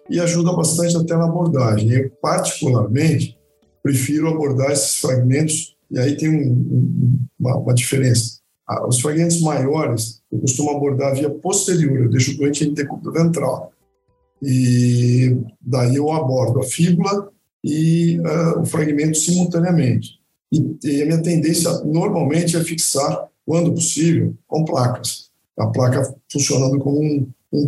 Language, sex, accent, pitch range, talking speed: Portuguese, male, Brazilian, 130-155 Hz, 140 wpm